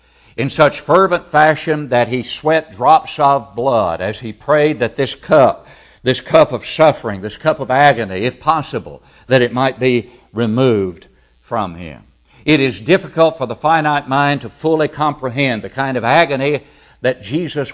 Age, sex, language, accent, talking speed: 60-79, male, English, American, 165 wpm